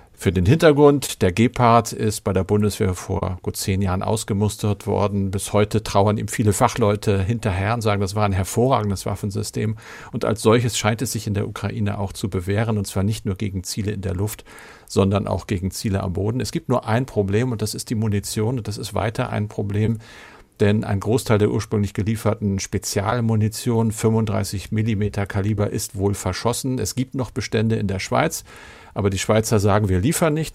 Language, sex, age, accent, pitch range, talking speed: German, male, 50-69, German, 100-115 Hz, 195 wpm